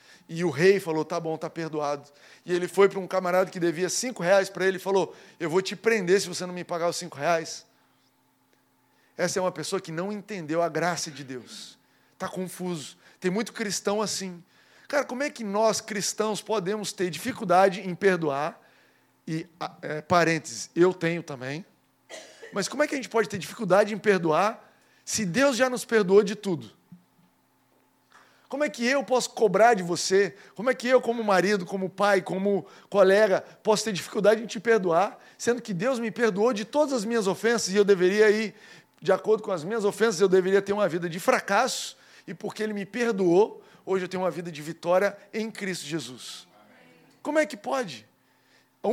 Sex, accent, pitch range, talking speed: male, Brazilian, 175-220 Hz, 195 wpm